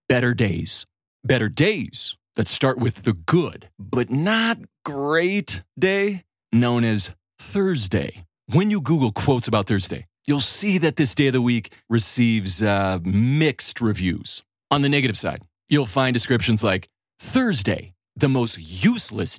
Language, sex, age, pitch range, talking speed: English, male, 30-49, 105-150 Hz, 140 wpm